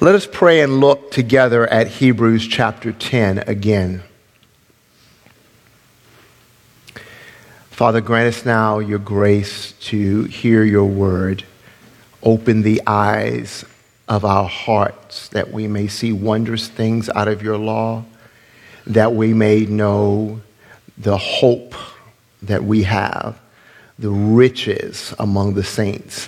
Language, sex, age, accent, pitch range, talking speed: English, male, 50-69, American, 100-115 Hz, 115 wpm